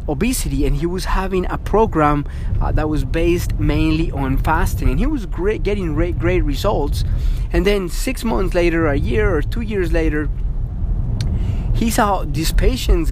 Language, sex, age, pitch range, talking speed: English, male, 30-49, 110-160 Hz, 170 wpm